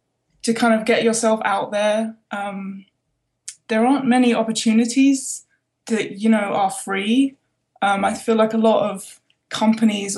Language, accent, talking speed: English, British, 145 wpm